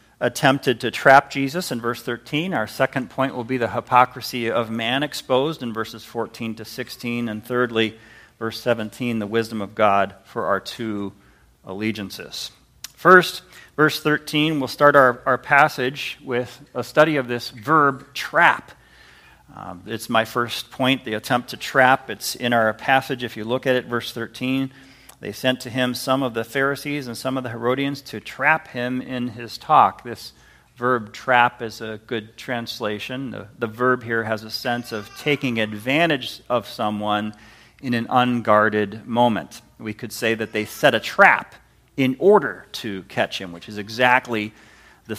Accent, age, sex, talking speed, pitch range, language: American, 40-59, male, 170 wpm, 110-135 Hz, English